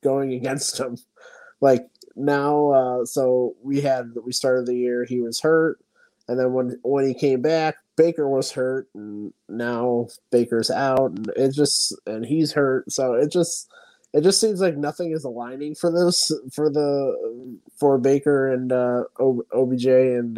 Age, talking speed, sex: 20-39, 165 wpm, male